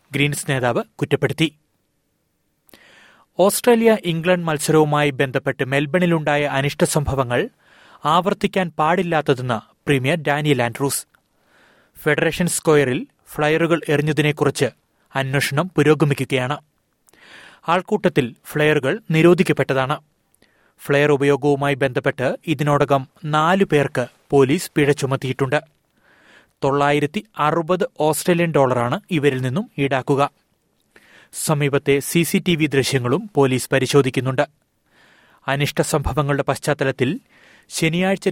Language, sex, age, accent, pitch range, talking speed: Malayalam, male, 30-49, native, 140-160 Hz, 70 wpm